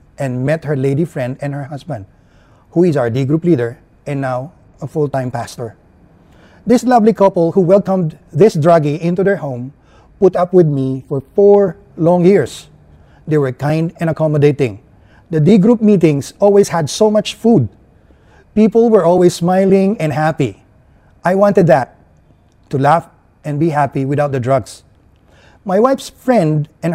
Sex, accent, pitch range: male, Filipino, 135-180 Hz